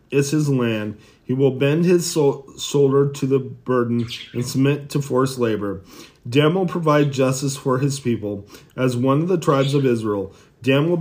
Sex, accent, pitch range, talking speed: male, American, 120-145 Hz, 180 wpm